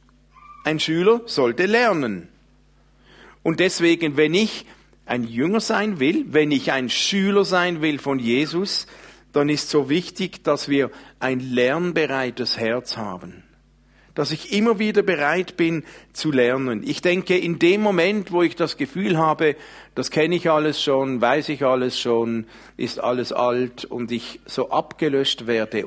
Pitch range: 125-170 Hz